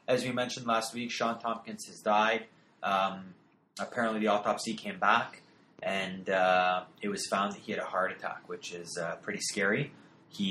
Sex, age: male, 20-39